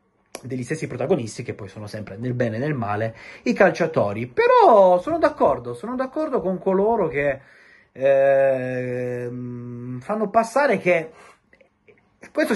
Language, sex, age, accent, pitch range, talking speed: Italian, male, 30-49, native, 125-195 Hz, 130 wpm